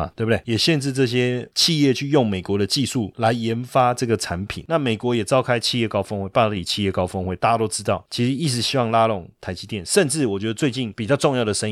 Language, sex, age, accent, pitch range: Chinese, male, 30-49, native, 100-130 Hz